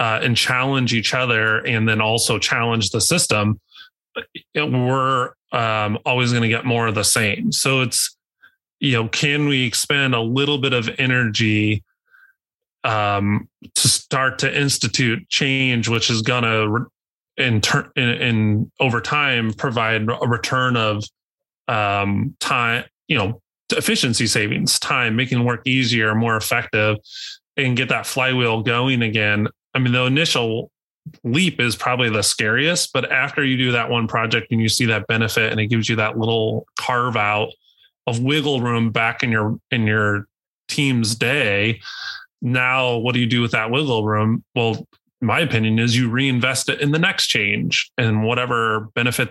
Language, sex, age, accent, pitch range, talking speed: English, male, 30-49, American, 110-130 Hz, 160 wpm